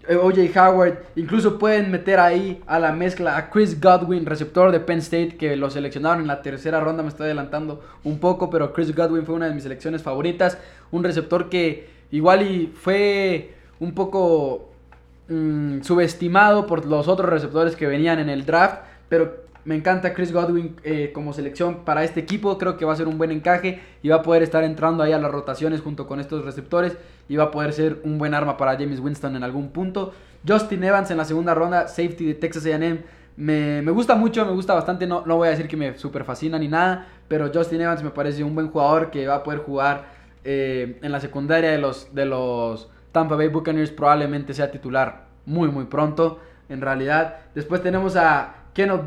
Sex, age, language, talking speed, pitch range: male, 20-39, English, 205 wpm, 145-175 Hz